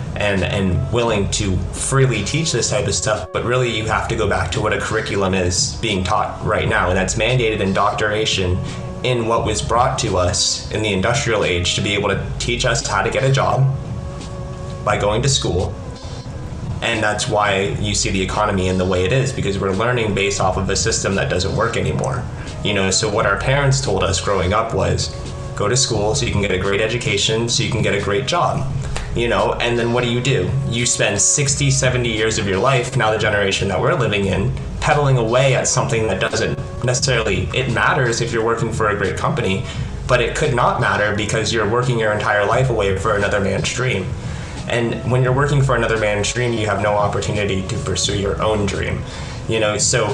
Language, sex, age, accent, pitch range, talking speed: English, male, 30-49, American, 100-125 Hz, 220 wpm